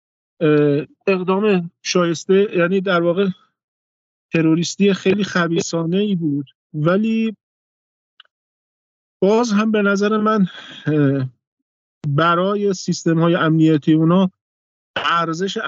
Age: 50-69